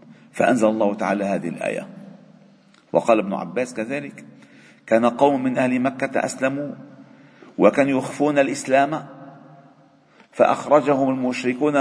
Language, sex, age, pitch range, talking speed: Arabic, male, 50-69, 135-210 Hz, 100 wpm